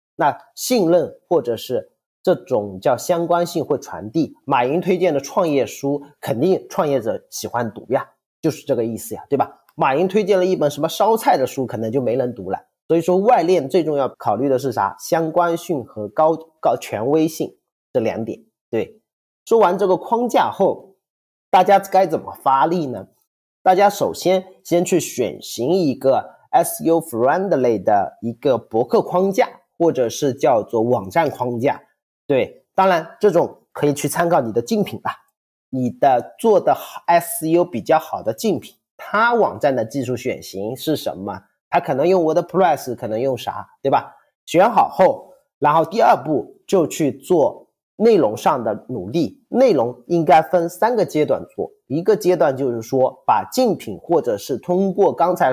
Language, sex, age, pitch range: English, male, 30-49, 140-190 Hz